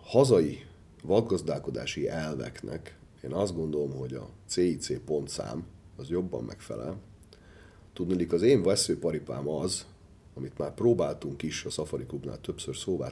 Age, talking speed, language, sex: 40-59, 125 wpm, Hungarian, male